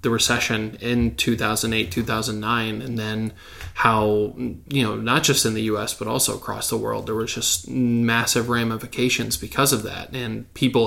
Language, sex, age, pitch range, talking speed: English, male, 20-39, 110-125 Hz, 165 wpm